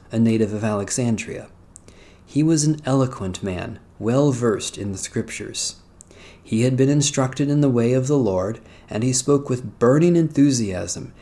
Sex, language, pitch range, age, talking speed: male, English, 100-140 Hz, 40-59, 155 wpm